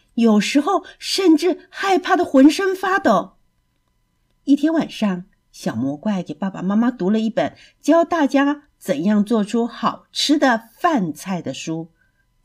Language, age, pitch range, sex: Chinese, 50-69, 190-285 Hz, female